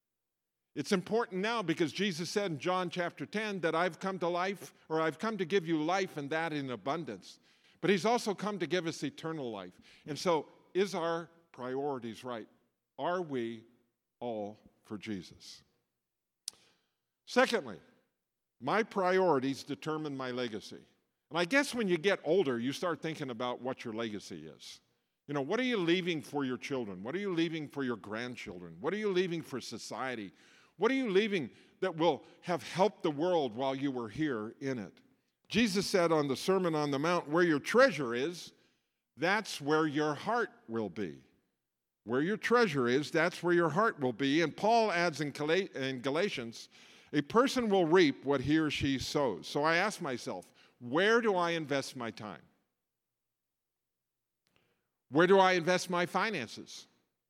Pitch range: 130-190 Hz